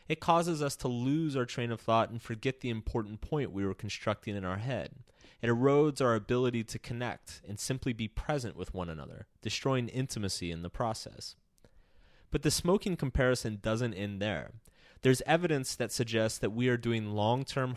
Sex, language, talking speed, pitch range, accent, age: male, English, 180 wpm, 100-130 Hz, American, 30-49